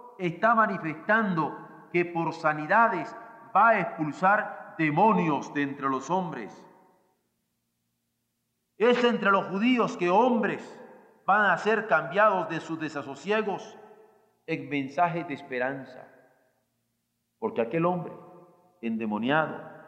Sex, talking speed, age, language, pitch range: male, 105 wpm, 50-69, Spanish, 130-195 Hz